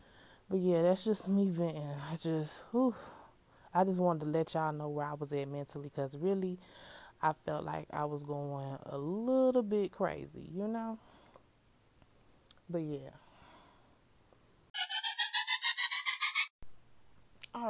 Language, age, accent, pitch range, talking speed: English, 20-39, American, 150-175 Hz, 130 wpm